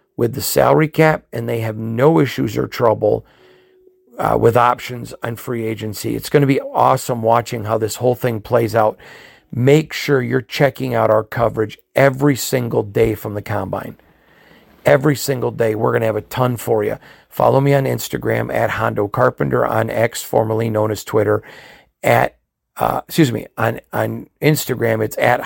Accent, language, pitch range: American, English, 110-130 Hz